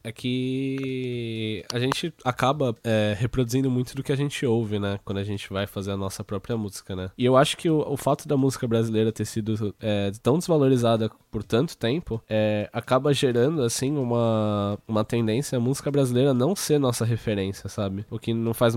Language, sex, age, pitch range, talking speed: Portuguese, male, 10-29, 100-125 Hz, 185 wpm